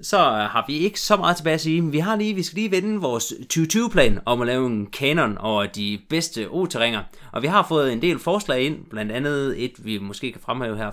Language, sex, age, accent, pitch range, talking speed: English, male, 30-49, Danish, 110-155 Hz, 230 wpm